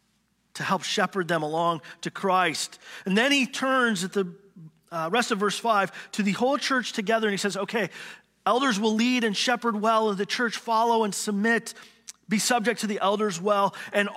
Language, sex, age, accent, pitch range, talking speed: English, male, 40-59, American, 190-225 Hz, 195 wpm